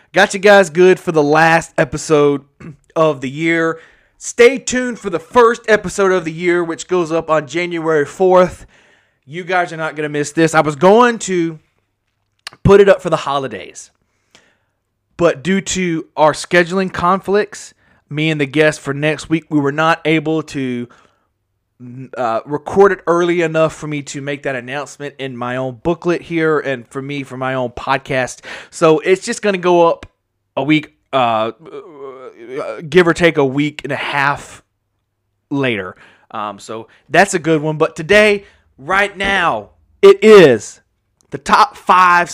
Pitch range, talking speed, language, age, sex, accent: 140-185 Hz, 170 wpm, English, 20-39, male, American